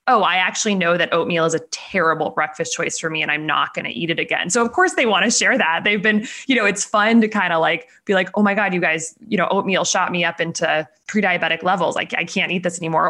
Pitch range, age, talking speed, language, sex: 165-210 Hz, 20-39, 280 wpm, English, female